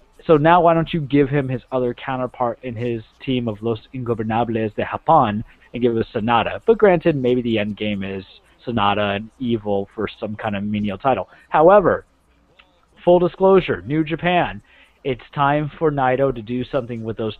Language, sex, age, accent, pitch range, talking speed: English, male, 30-49, American, 115-145 Hz, 180 wpm